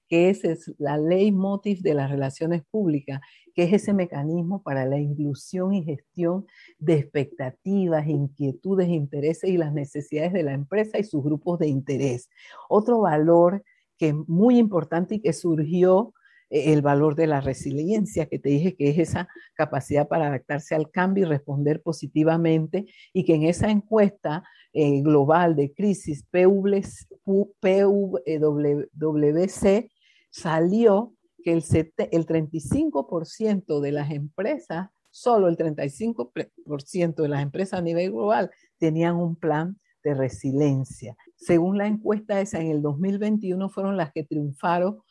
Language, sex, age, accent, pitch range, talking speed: Spanish, female, 50-69, American, 150-195 Hz, 145 wpm